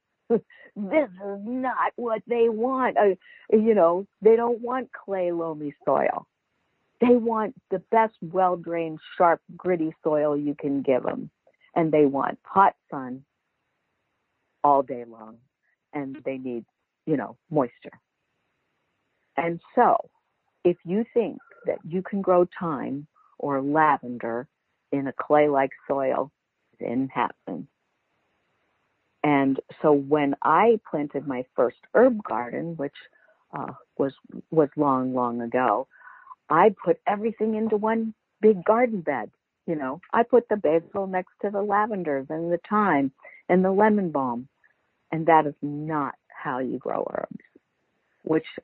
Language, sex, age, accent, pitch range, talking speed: English, female, 50-69, American, 140-210 Hz, 135 wpm